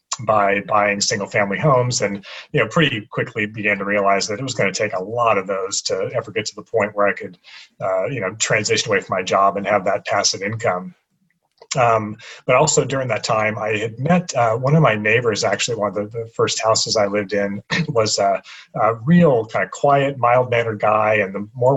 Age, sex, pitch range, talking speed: 30-49, male, 105-150 Hz, 225 wpm